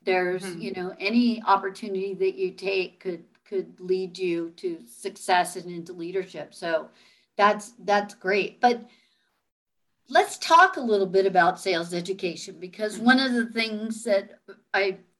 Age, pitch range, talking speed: 50-69, 185-220 Hz, 145 wpm